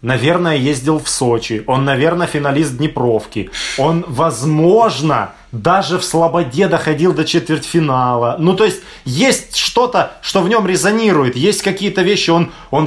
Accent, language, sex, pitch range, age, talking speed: native, Russian, male, 125-165 Hz, 20-39, 140 wpm